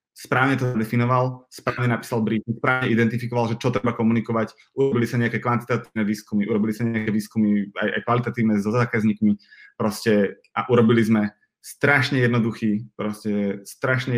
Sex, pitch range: male, 110-130 Hz